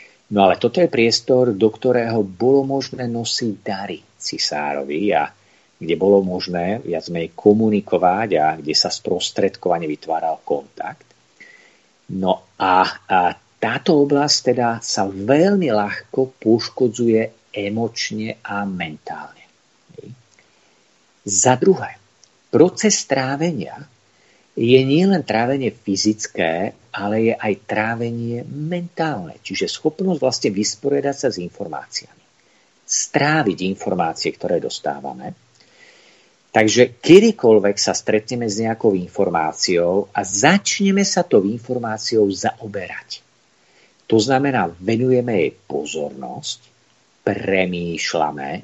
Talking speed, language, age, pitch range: 100 wpm, Slovak, 50-69, 100-135 Hz